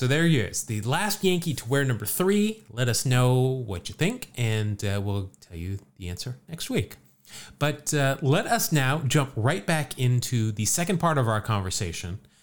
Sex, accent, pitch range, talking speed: male, American, 100-130 Hz, 200 wpm